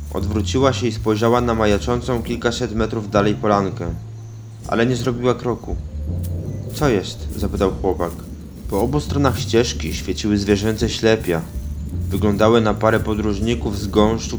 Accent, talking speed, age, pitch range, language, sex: native, 130 wpm, 20-39, 90-120 Hz, Polish, male